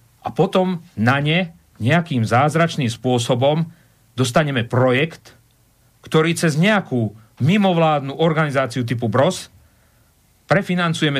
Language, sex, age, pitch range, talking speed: Slovak, male, 40-59, 115-160 Hz, 90 wpm